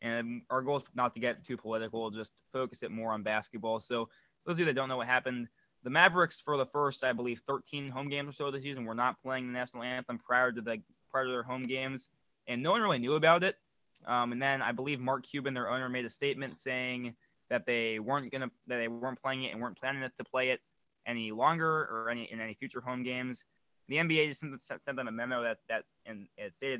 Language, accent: English, American